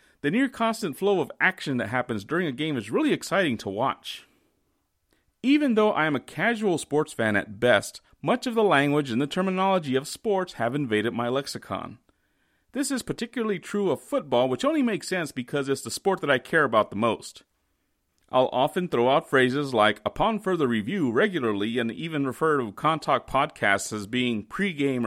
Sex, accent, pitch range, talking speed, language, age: male, American, 115-190 Hz, 185 wpm, English, 40-59